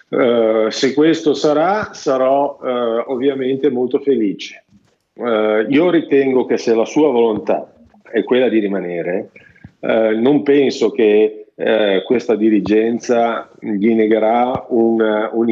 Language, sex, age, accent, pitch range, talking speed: Italian, male, 40-59, native, 105-130 Hz, 105 wpm